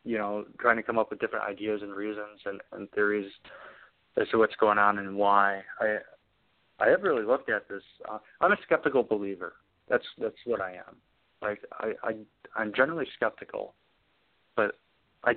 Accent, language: American, English